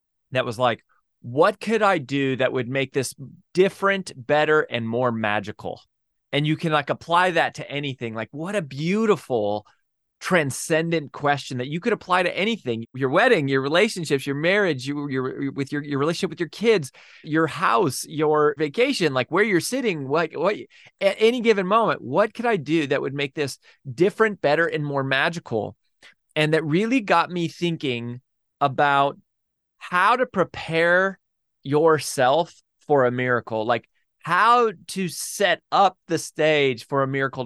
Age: 20-39